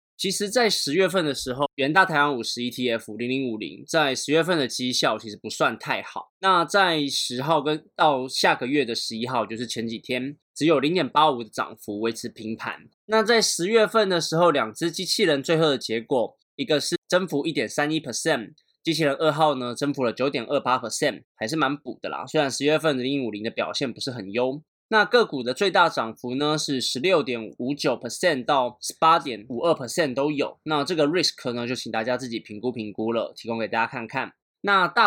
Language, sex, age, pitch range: Chinese, male, 20-39, 115-155 Hz